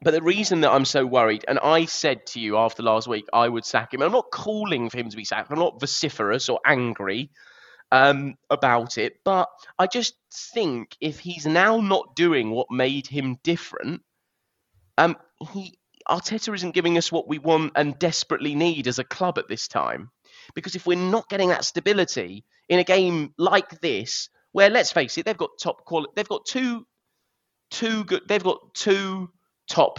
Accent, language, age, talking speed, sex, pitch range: British, English, 20-39, 190 wpm, male, 120-180 Hz